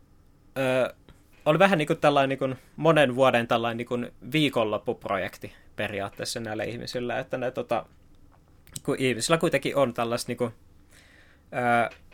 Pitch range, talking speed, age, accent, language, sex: 100-140 Hz, 125 wpm, 20-39, native, Finnish, male